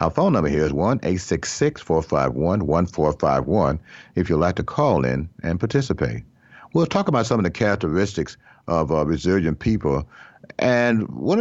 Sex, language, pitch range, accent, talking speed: male, English, 90-120 Hz, American, 170 wpm